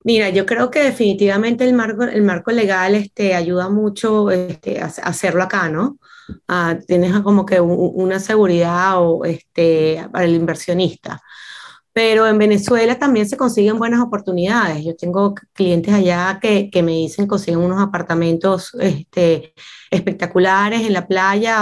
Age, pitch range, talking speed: 20-39, 185-225 Hz, 150 wpm